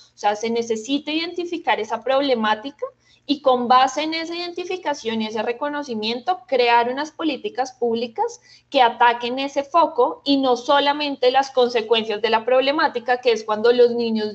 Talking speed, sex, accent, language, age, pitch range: 155 wpm, female, Colombian, Spanish, 20-39, 235-280 Hz